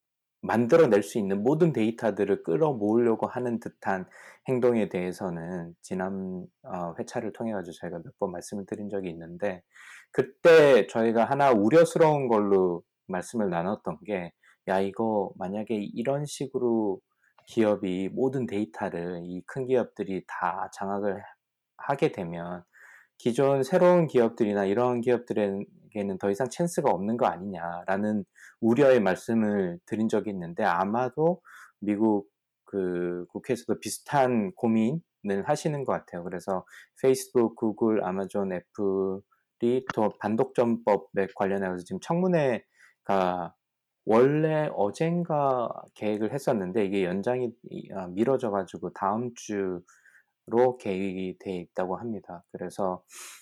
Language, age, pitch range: Korean, 20-39, 95-125 Hz